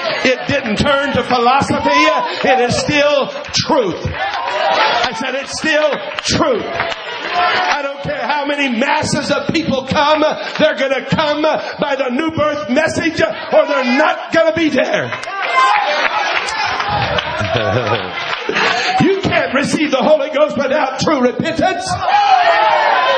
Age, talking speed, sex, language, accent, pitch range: 50-69, 125 wpm, male, English, American, 270-345 Hz